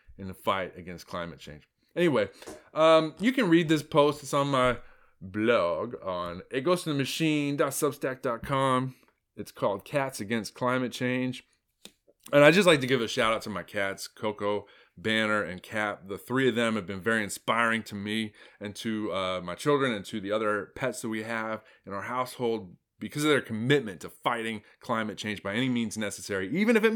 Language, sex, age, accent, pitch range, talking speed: English, male, 30-49, American, 105-145 Hz, 185 wpm